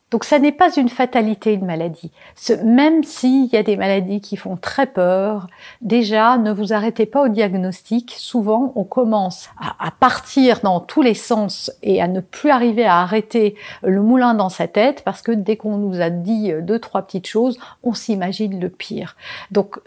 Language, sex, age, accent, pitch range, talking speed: French, female, 50-69, French, 195-255 Hz, 190 wpm